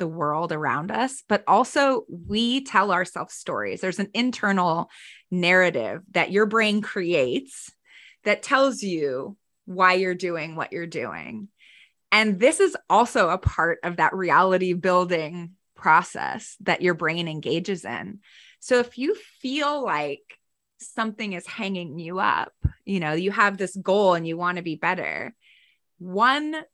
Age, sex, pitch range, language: 20-39, female, 170-220 Hz, English